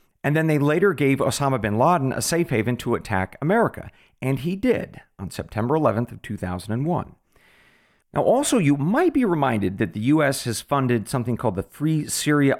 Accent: American